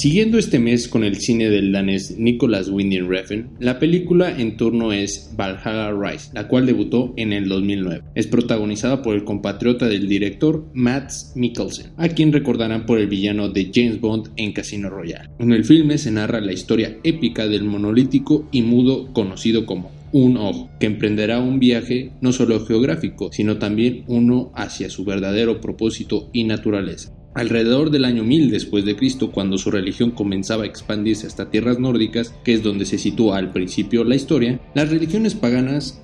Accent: Mexican